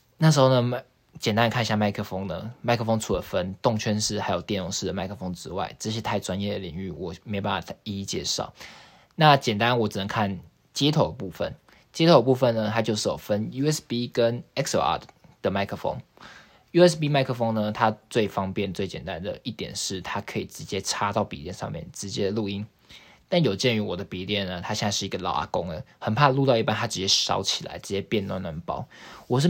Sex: male